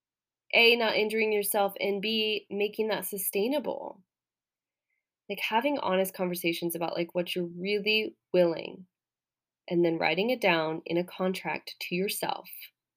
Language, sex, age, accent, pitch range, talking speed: English, female, 20-39, American, 175-205 Hz, 135 wpm